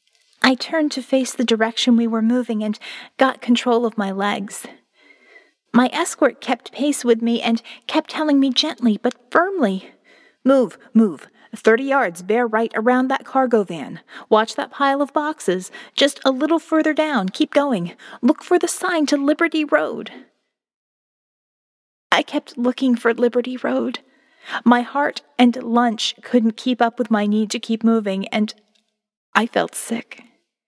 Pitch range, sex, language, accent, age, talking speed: 225-270 Hz, female, English, American, 30-49, 155 wpm